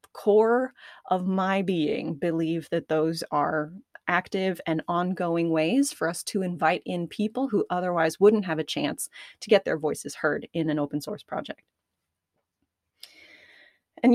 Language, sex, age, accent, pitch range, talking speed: English, female, 20-39, American, 175-250 Hz, 150 wpm